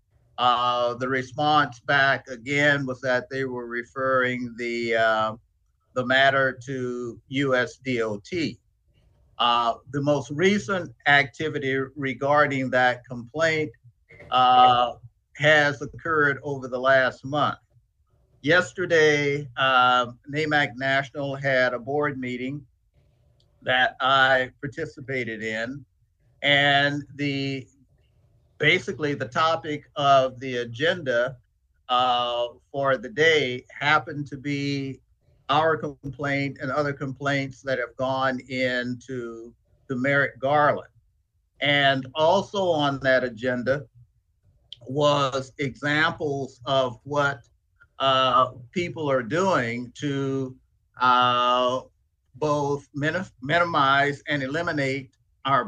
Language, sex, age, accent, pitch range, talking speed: English, male, 50-69, American, 125-145 Hz, 100 wpm